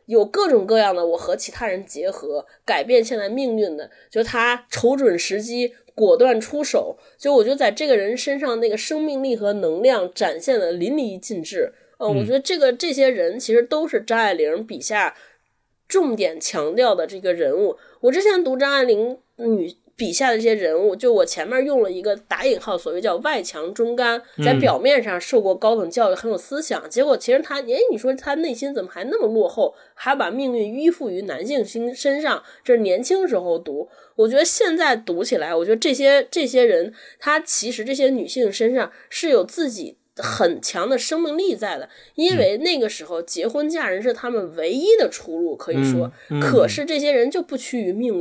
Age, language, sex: 20-39, Chinese, female